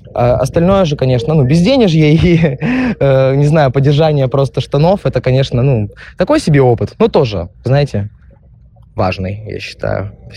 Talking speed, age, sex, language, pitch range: 145 wpm, 20-39, male, Russian, 110-145 Hz